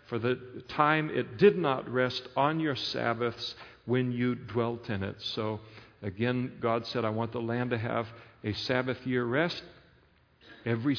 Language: English